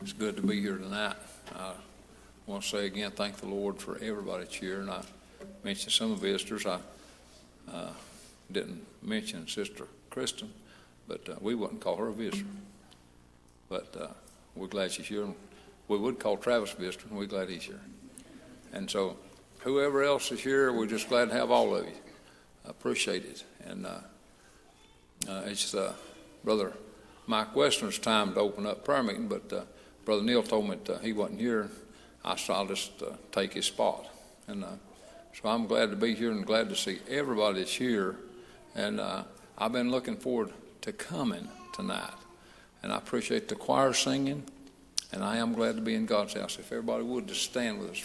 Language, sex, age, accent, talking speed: English, male, 60-79, American, 185 wpm